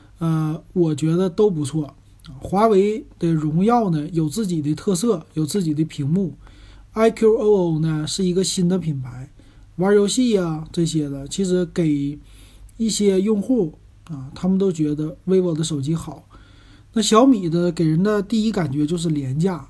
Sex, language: male, Chinese